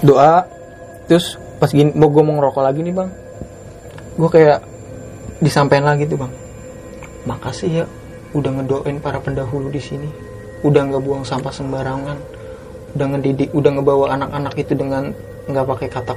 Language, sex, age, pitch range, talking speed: Indonesian, male, 20-39, 135-170 Hz, 150 wpm